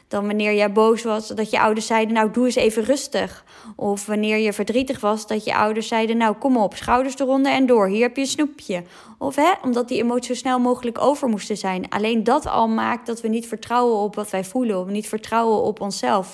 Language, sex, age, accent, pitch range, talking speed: Dutch, female, 20-39, Dutch, 220-265 Hz, 230 wpm